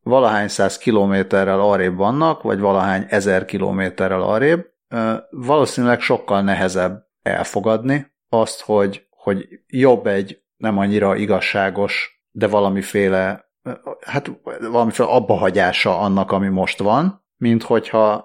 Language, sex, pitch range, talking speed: Hungarian, male, 95-125 Hz, 110 wpm